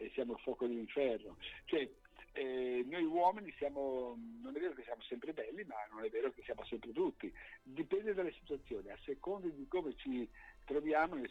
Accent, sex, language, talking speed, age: native, male, Italian, 180 wpm, 60-79